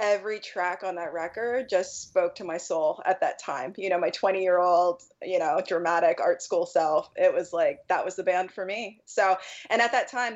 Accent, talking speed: American, 215 wpm